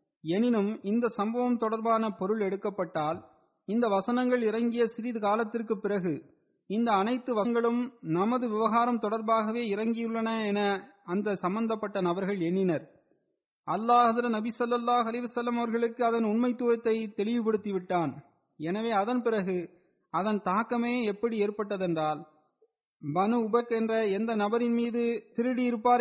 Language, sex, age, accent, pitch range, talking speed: Tamil, male, 30-49, native, 200-235 Hz, 110 wpm